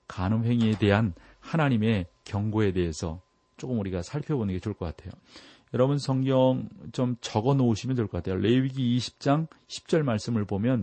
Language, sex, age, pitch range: Korean, male, 40-59, 100-130 Hz